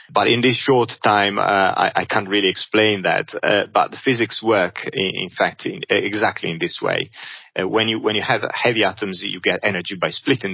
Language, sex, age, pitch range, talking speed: English, male, 30-49, 100-125 Hz, 215 wpm